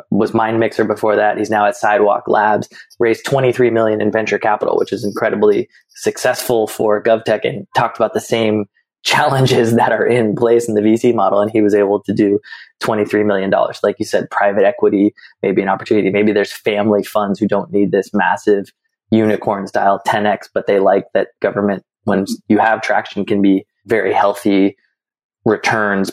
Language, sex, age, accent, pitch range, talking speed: English, male, 20-39, American, 100-115 Hz, 180 wpm